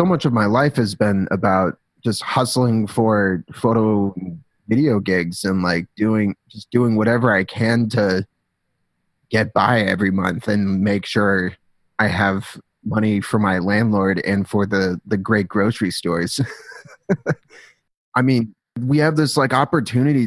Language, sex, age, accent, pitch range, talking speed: English, male, 30-49, American, 95-115 Hz, 150 wpm